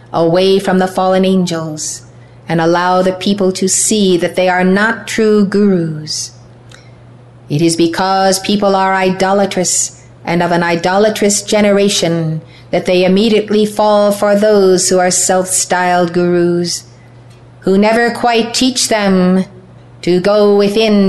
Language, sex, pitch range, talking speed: English, female, 155-195 Hz, 130 wpm